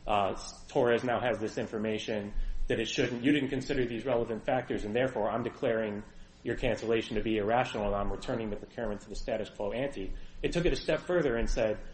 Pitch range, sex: 105-130 Hz, male